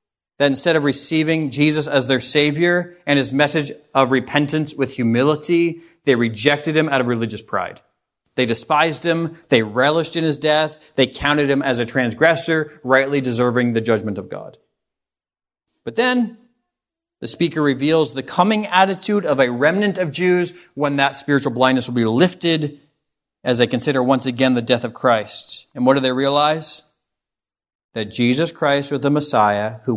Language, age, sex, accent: English, 40-59, male, American